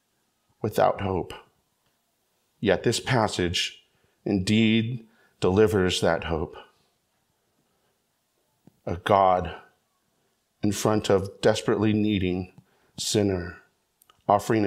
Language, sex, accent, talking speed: English, male, American, 75 wpm